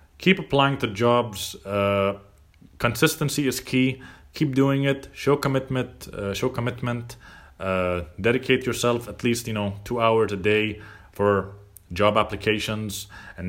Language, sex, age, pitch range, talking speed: English, male, 30-49, 95-125 Hz, 140 wpm